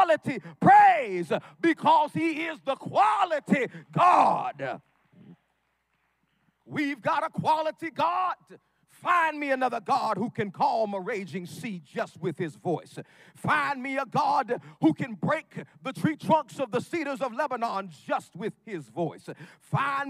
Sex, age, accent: male, 40-59, American